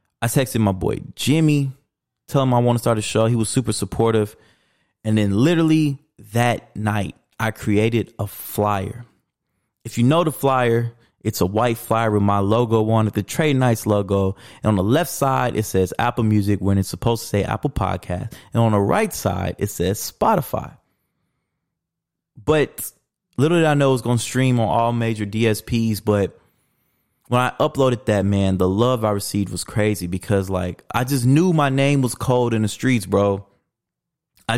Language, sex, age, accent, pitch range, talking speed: English, male, 20-39, American, 105-130 Hz, 185 wpm